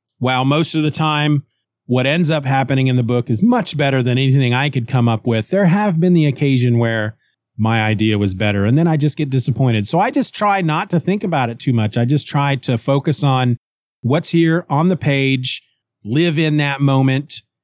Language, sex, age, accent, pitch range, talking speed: English, male, 40-59, American, 125-150 Hz, 220 wpm